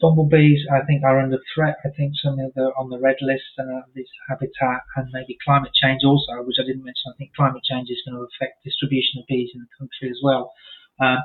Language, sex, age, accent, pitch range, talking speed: English, male, 30-49, British, 125-140 Hz, 245 wpm